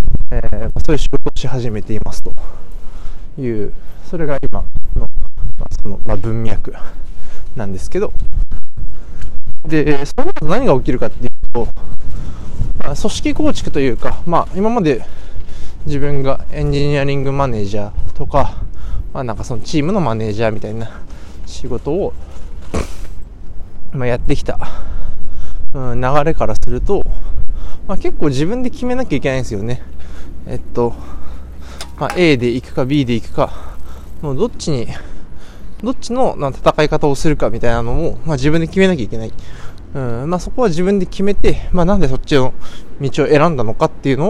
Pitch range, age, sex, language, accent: 95-145 Hz, 20-39, male, Japanese, native